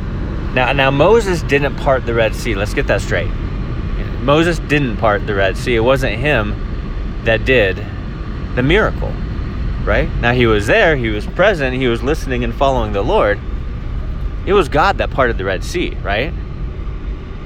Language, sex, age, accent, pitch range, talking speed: English, male, 30-49, American, 75-130 Hz, 170 wpm